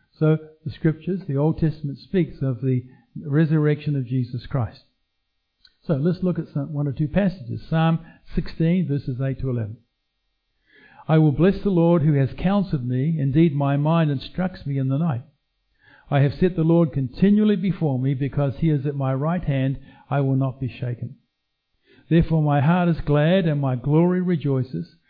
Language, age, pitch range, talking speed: English, 60-79, 135-165 Hz, 175 wpm